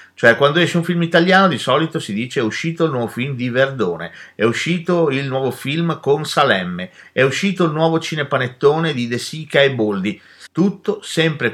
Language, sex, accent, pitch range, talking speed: Italian, male, native, 115-185 Hz, 190 wpm